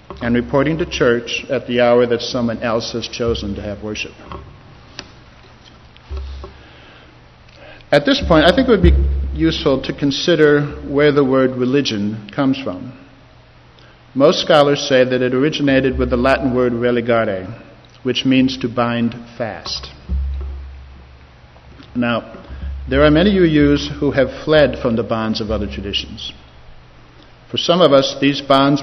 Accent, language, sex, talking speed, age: American, English, male, 140 wpm, 60-79